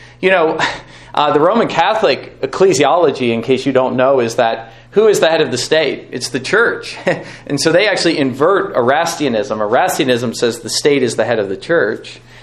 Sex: male